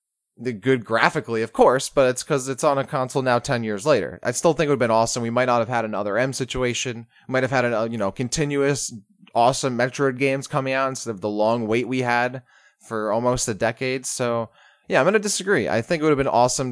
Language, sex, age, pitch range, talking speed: English, male, 20-39, 110-130 Hz, 250 wpm